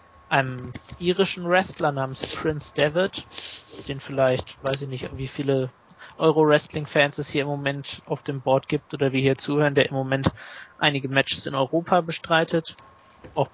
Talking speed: 155 wpm